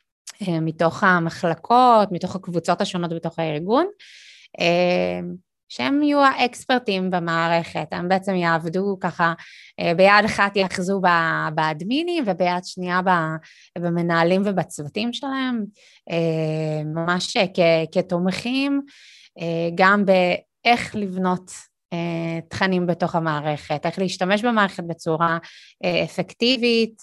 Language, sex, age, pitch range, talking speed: English, female, 20-39, 165-205 Hz, 80 wpm